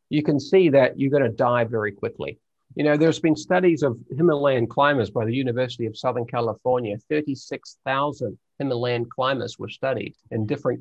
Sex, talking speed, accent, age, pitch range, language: male, 165 wpm, American, 50-69, 110-135 Hz, English